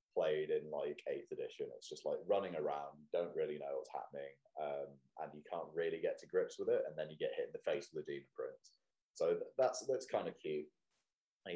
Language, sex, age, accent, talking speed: English, male, 20-39, British, 235 wpm